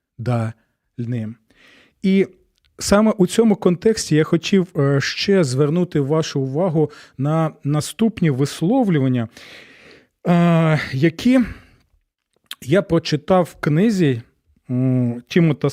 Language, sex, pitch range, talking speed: Ukrainian, male, 135-180 Hz, 80 wpm